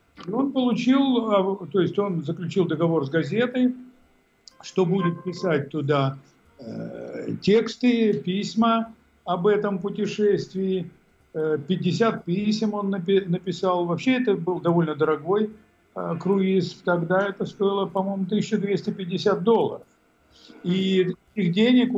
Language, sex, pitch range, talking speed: Russian, male, 155-200 Hz, 110 wpm